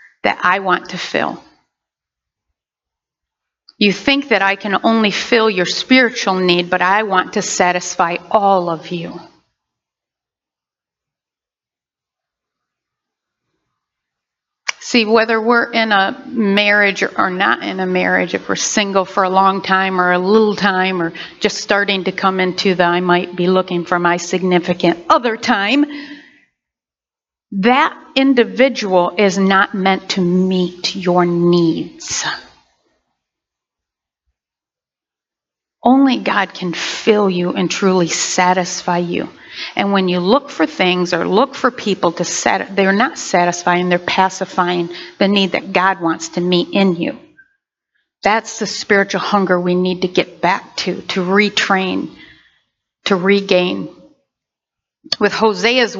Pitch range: 180-215 Hz